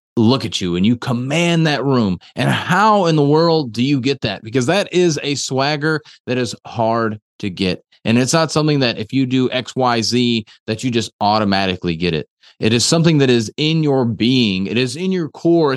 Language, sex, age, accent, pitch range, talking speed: English, male, 30-49, American, 100-145 Hz, 215 wpm